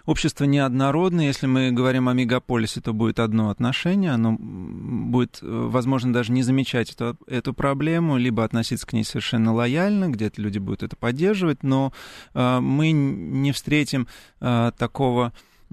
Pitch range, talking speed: 110-130 Hz, 135 wpm